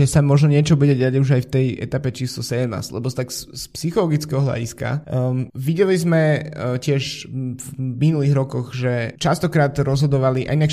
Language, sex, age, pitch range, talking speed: Slovak, male, 20-39, 125-140 Hz, 190 wpm